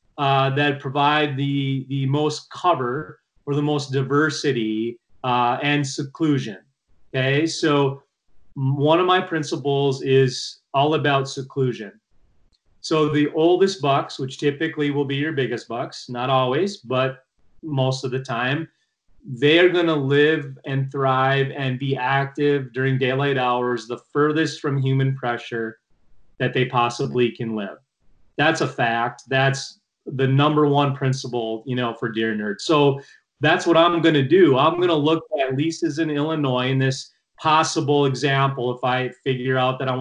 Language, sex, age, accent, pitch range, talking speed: English, male, 30-49, American, 130-150 Hz, 155 wpm